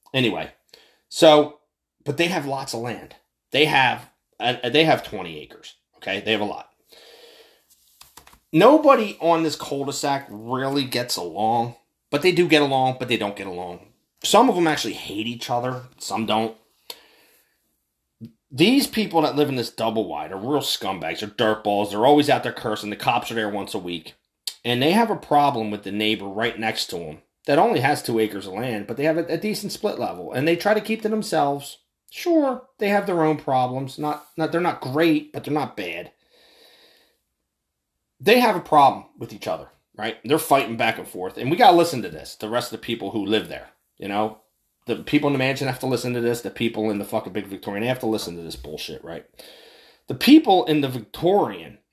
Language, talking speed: English, 205 wpm